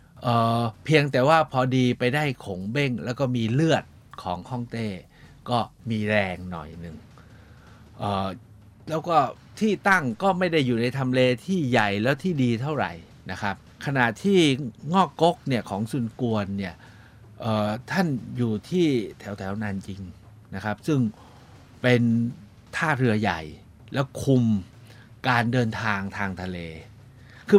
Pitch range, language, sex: 100-130 Hz, Thai, male